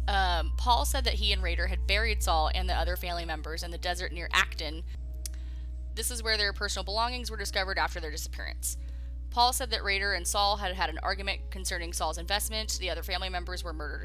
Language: English